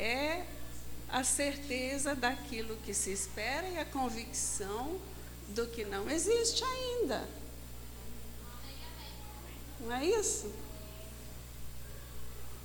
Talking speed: 85 wpm